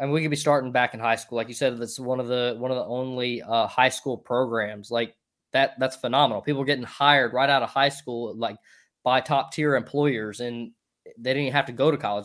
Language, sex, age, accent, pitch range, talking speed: English, male, 20-39, American, 115-135 Hz, 255 wpm